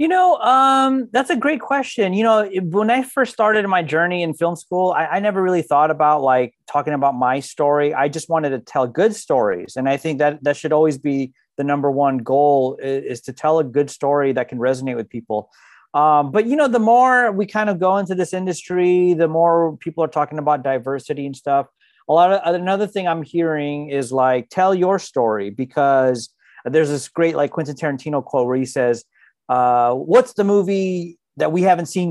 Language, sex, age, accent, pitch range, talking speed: English, male, 30-49, American, 140-180 Hz, 210 wpm